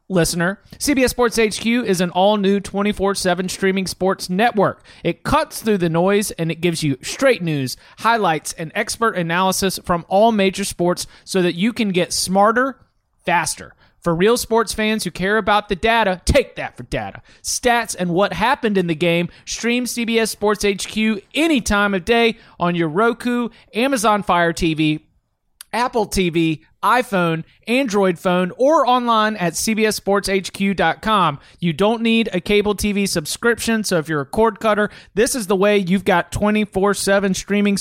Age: 30-49